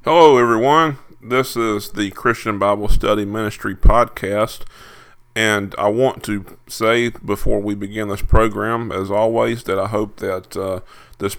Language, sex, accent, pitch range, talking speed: English, male, American, 100-120 Hz, 150 wpm